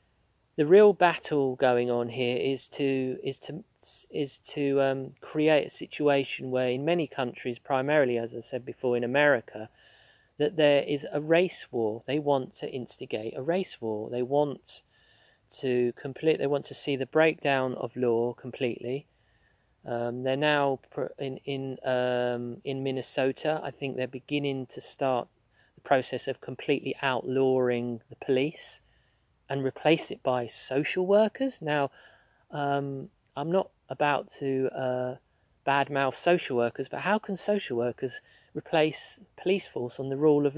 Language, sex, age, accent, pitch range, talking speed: English, male, 40-59, British, 125-150 Hz, 150 wpm